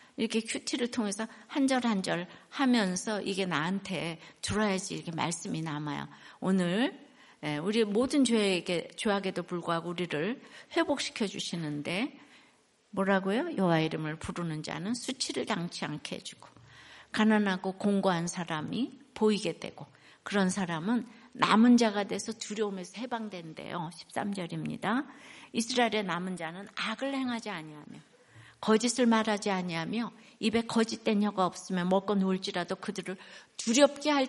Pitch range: 185-240 Hz